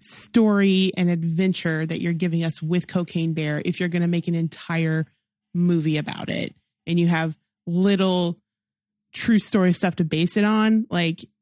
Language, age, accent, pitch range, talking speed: English, 20-39, American, 170-205 Hz, 170 wpm